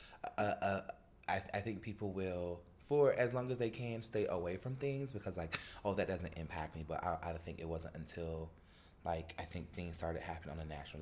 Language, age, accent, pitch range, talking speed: English, 20-39, American, 80-100 Hz, 225 wpm